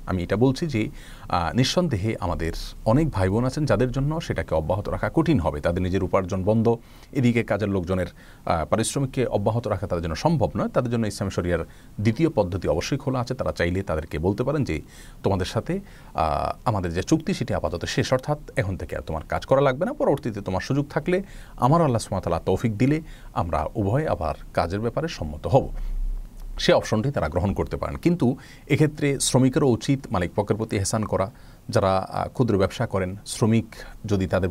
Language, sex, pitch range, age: Bengali, male, 95-130 Hz, 40-59